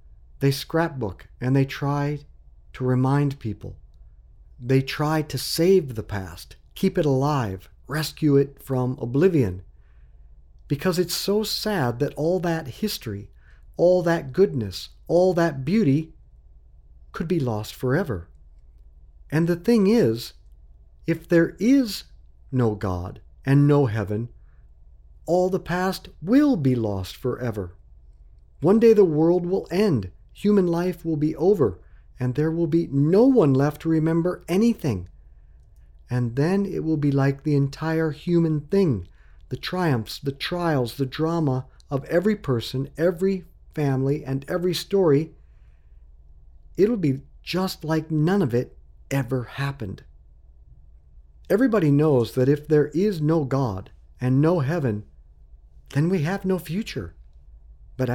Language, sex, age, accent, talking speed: English, male, 50-69, American, 135 wpm